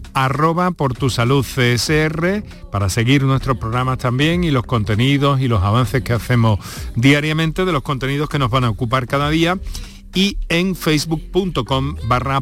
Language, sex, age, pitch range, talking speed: Spanish, male, 50-69, 105-150 Hz, 160 wpm